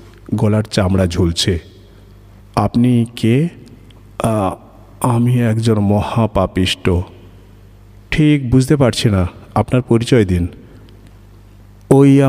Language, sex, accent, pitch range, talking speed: Bengali, male, native, 100-135 Hz, 70 wpm